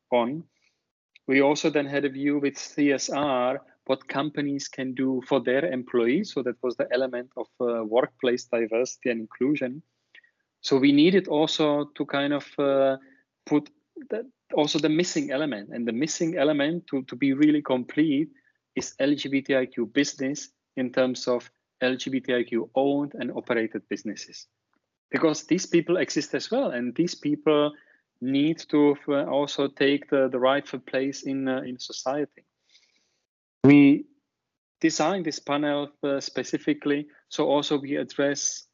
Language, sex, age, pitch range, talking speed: English, male, 30-49, 125-150 Hz, 140 wpm